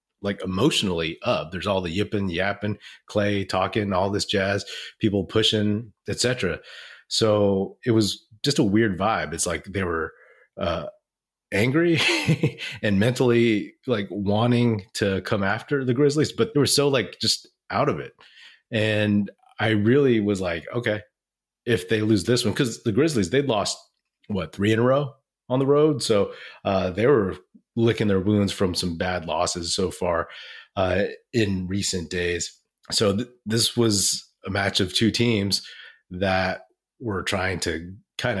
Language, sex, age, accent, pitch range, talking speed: English, male, 30-49, American, 95-115 Hz, 160 wpm